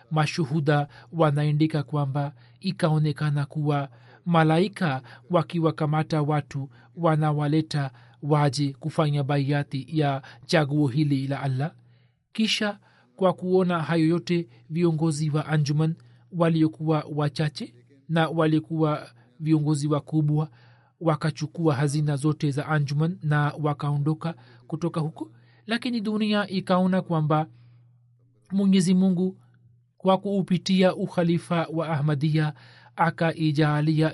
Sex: male